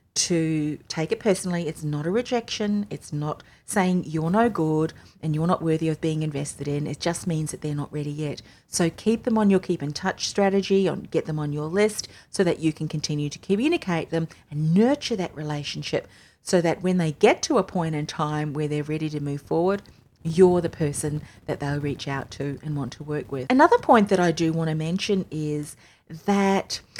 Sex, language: female, English